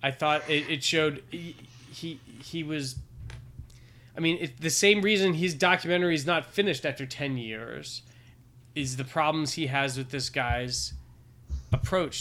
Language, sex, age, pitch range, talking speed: English, male, 20-39, 125-160 Hz, 160 wpm